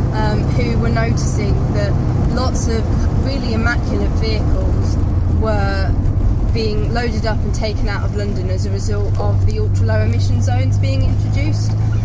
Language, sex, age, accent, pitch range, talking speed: English, female, 20-39, British, 80-110 Hz, 145 wpm